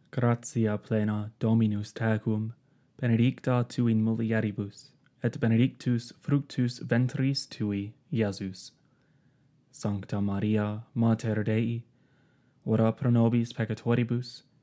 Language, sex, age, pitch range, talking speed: English, male, 20-39, 110-130 Hz, 90 wpm